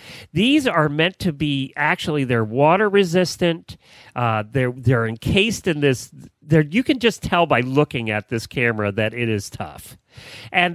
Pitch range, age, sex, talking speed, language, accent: 125-170 Hz, 40-59, male, 165 wpm, English, American